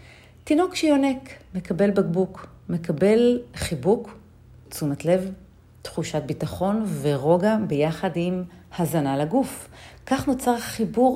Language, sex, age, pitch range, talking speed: Hebrew, female, 40-59, 155-210 Hz, 90 wpm